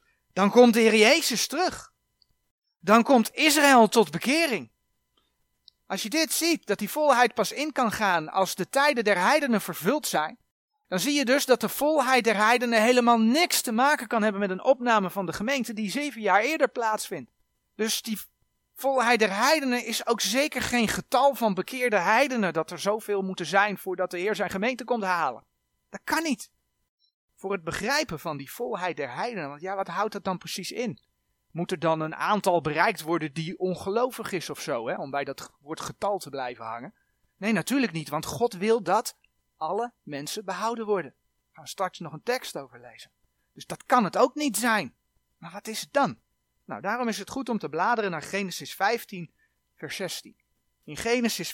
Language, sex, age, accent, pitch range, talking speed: Dutch, male, 40-59, Dutch, 180-245 Hz, 190 wpm